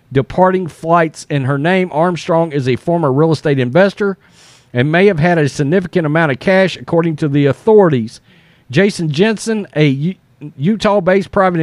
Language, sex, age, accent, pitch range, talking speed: English, male, 40-59, American, 140-185 Hz, 155 wpm